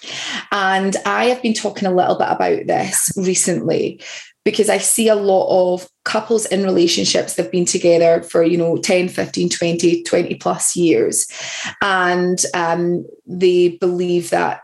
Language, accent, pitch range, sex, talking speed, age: English, British, 175-205 Hz, female, 155 wpm, 20-39